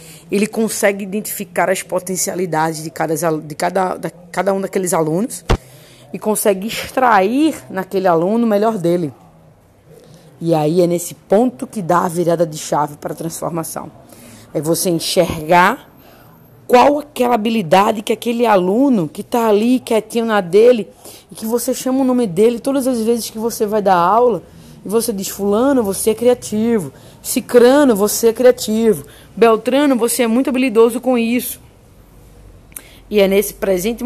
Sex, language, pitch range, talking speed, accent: female, Portuguese, 170-230 Hz, 155 wpm, Brazilian